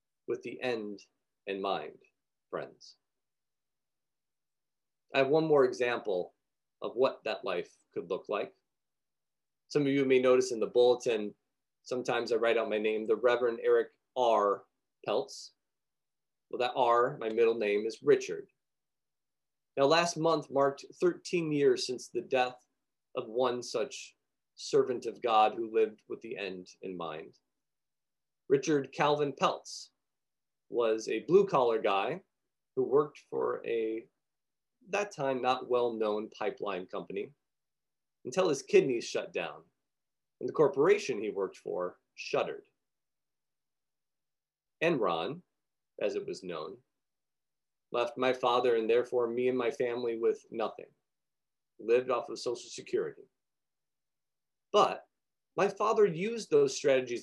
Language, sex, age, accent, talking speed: English, male, 40-59, American, 130 wpm